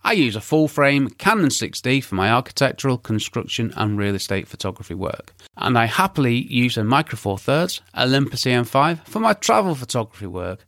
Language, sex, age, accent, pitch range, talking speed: English, male, 30-49, British, 110-160 Hz, 175 wpm